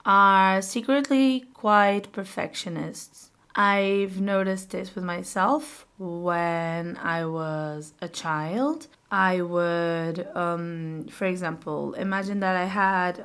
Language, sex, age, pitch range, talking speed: English, female, 20-39, 175-215 Hz, 105 wpm